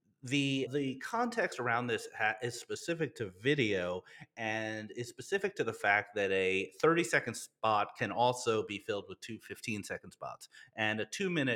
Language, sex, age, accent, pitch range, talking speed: English, male, 30-49, American, 100-140 Hz, 150 wpm